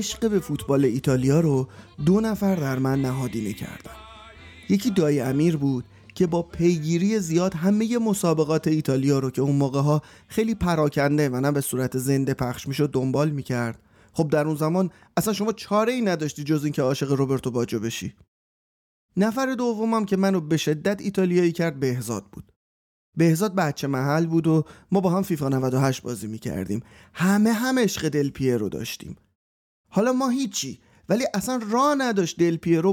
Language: Persian